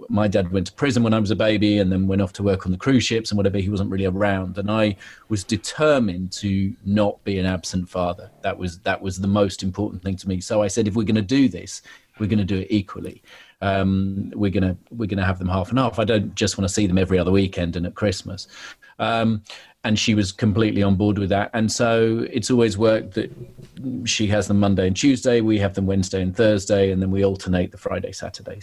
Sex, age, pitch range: male, 40-59, 95-115 Hz